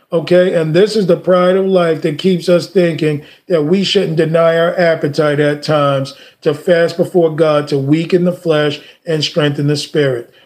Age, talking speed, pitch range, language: 40-59, 185 wpm, 160-205 Hz, English